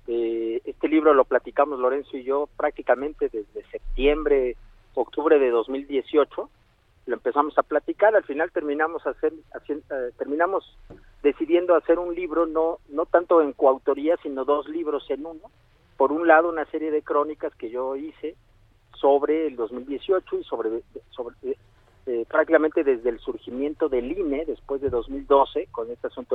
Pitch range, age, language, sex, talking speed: 135-215 Hz, 50-69, Spanish, male, 150 wpm